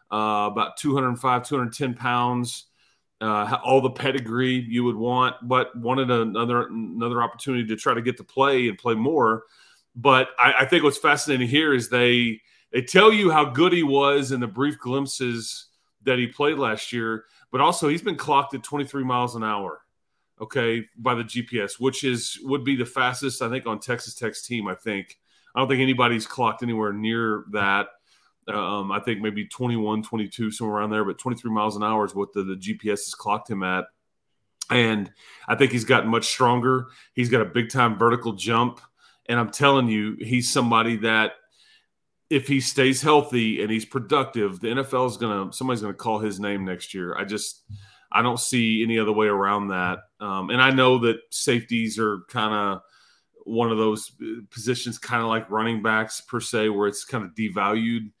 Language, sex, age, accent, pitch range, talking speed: English, male, 30-49, American, 110-130 Hz, 190 wpm